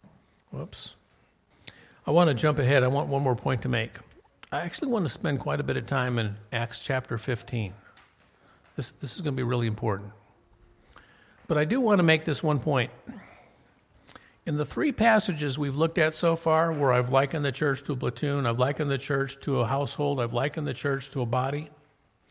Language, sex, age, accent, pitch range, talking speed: English, male, 50-69, American, 115-150 Hz, 200 wpm